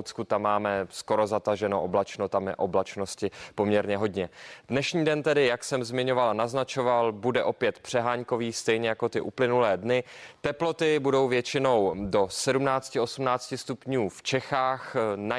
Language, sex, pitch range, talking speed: Czech, male, 110-135 Hz, 135 wpm